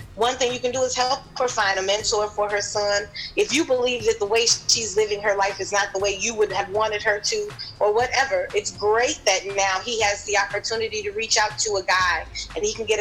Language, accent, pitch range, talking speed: English, American, 185-230 Hz, 250 wpm